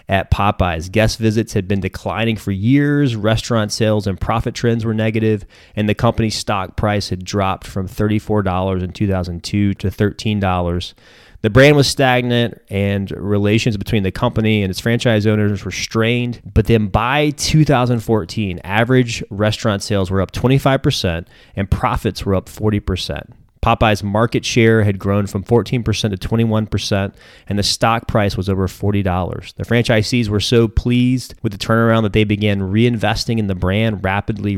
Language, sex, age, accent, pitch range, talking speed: English, male, 30-49, American, 100-115 Hz, 160 wpm